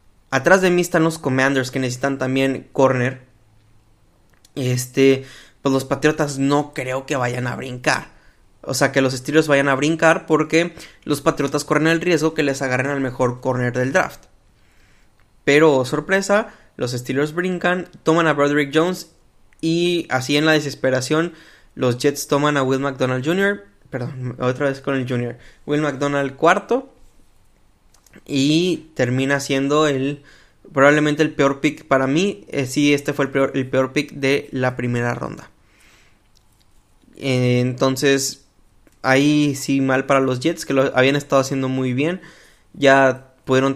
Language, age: Spanish, 20-39